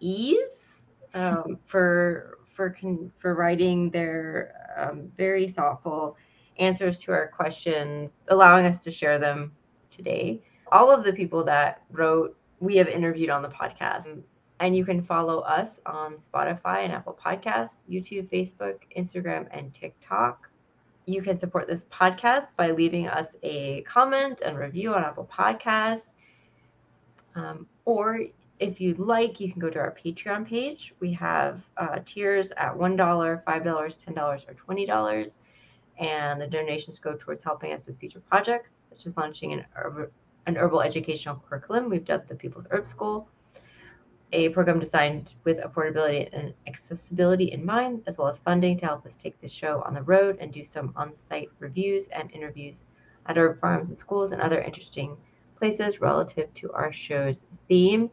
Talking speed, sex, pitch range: 160 wpm, female, 150-190 Hz